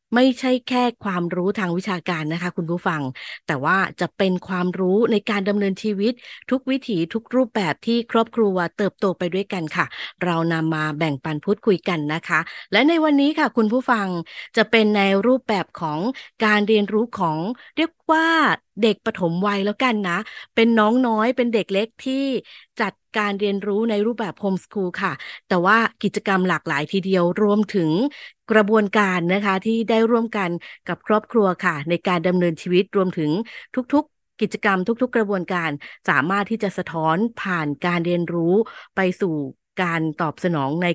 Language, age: Thai, 20-39